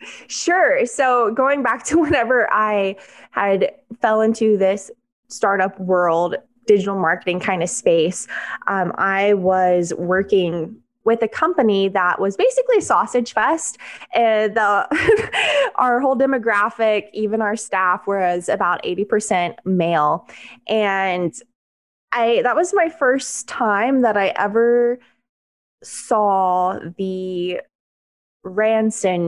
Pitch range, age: 185-240 Hz, 20-39